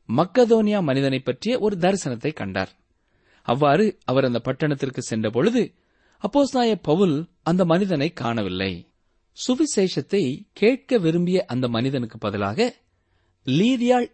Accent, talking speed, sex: native, 100 wpm, male